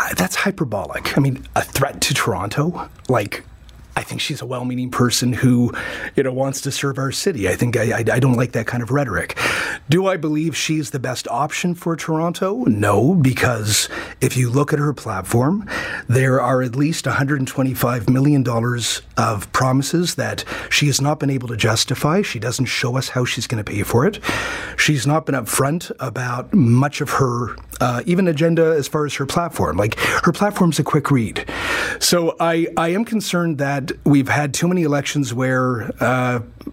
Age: 30-49